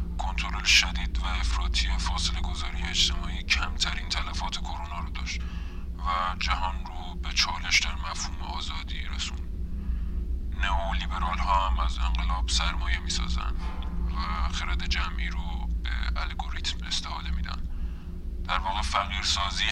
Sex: male